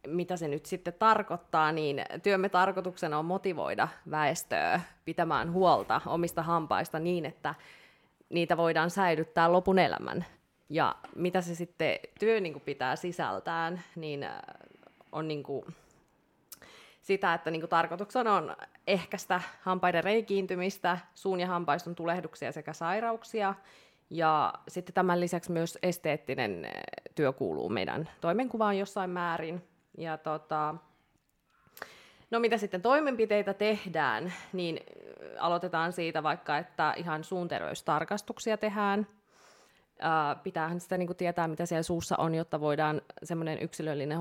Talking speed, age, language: 115 wpm, 20-39, Finnish